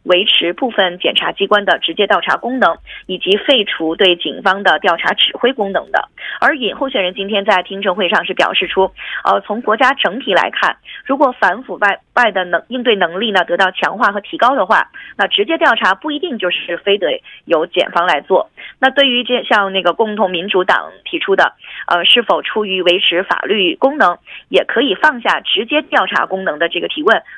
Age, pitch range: 20-39, 185-280 Hz